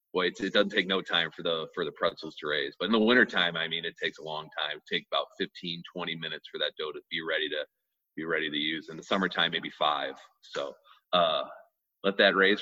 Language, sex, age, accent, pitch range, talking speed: English, male, 30-49, American, 95-130 Hz, 240 wpm